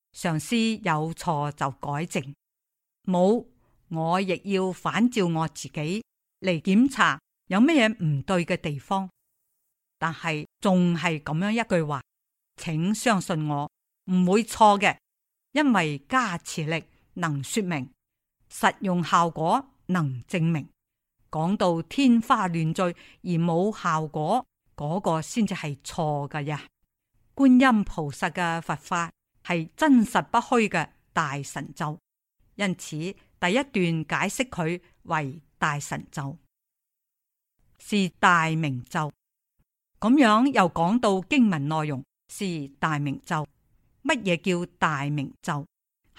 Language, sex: Chinese, female